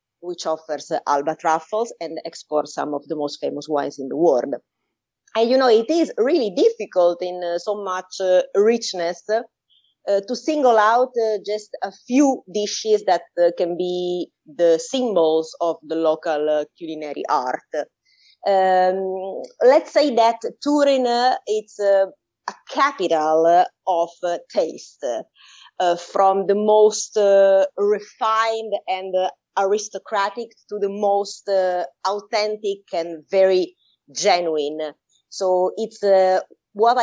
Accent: Italian